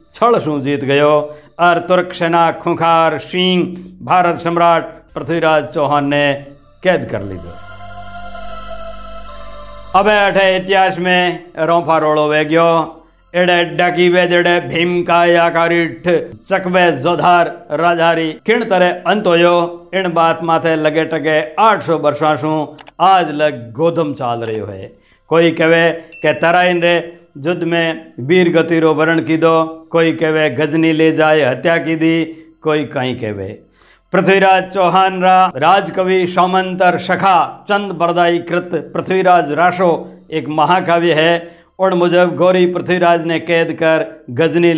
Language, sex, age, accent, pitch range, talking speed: Hindi, male, 50-69, native, 155-175 Hz, 90 wpm